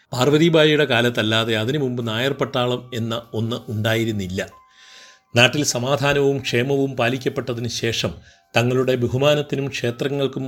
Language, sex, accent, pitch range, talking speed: Malayalam, male, native, 115-140 Hz, 95 wpm